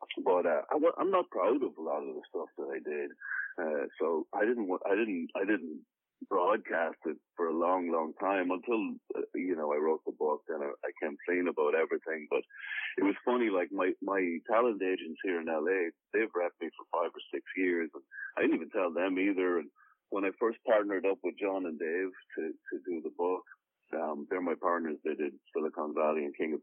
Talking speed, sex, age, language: 220 wpm, male, 40-59, English